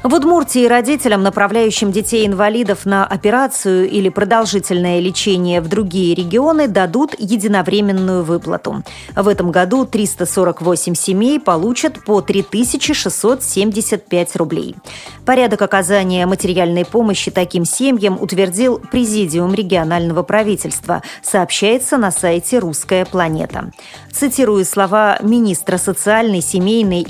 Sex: female